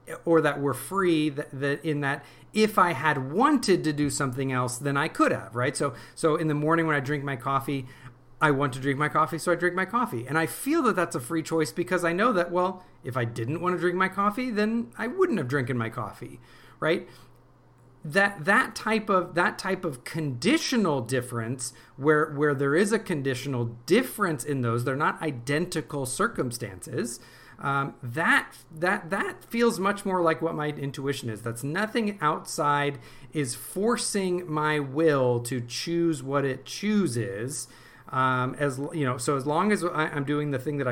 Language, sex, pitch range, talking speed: English, male, 130-175 Hz, 190 wpm